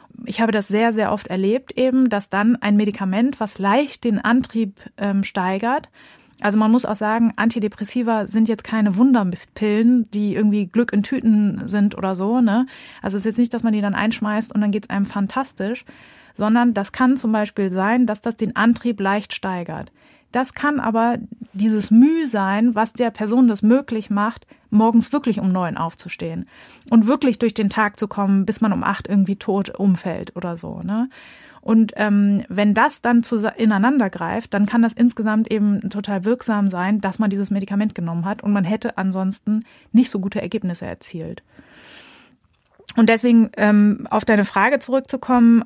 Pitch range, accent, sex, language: 205-235 Hz, German, female, German